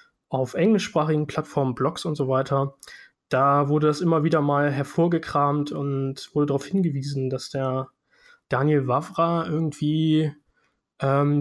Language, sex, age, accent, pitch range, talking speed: German, male, 20-39, German, 135-160 Hz, 125 wpm